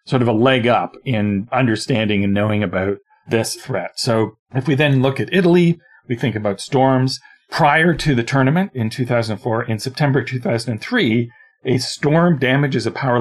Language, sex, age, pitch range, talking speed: English, male, 40-59, 110-135 Hz, 170 wpm